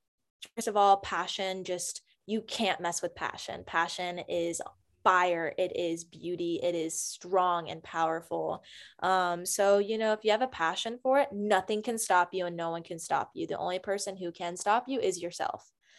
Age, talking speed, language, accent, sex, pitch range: 10-29, 190 wpm, English, American, female, 175-225 Hz